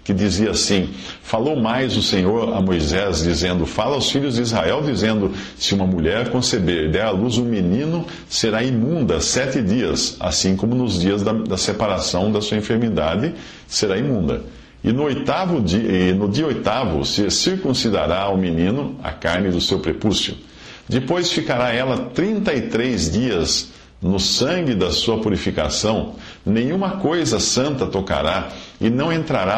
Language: Portuguese